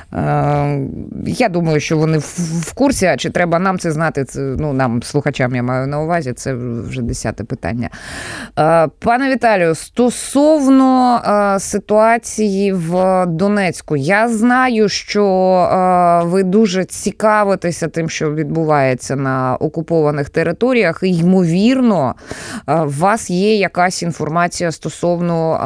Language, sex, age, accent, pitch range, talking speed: Ukrainian, female, 20-39, native, 145-195 Hz, 115 wpm